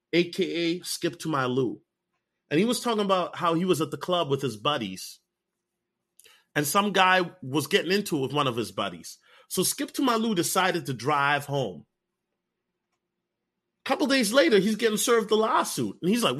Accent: American